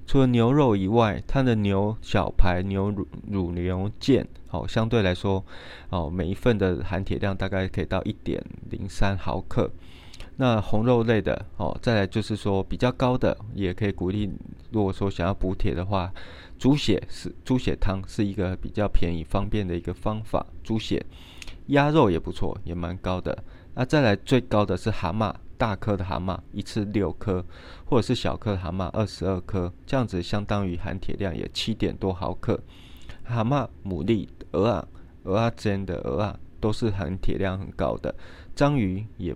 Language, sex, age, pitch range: Chinese, male, 20-39, 90-110 Hz